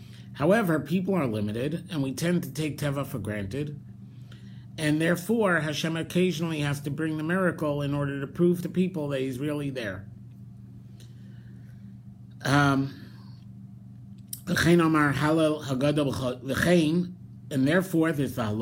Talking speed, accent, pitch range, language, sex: 110 wpm, American, 125-160 Hz, English, male